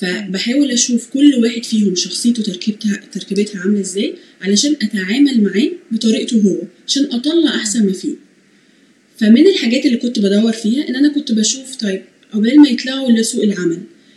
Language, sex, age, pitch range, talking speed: Arabic, female, 20-39, 200-270 Hz, 155 wpm